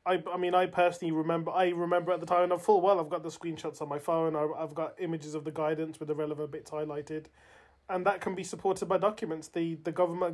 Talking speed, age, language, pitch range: 250 wpm, 20-39, English, 155-175 Hz